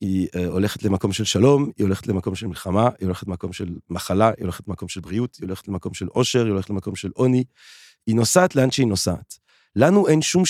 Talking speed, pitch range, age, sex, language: 215 wpm, 95-125 Hz, 40-59, male, Hebrew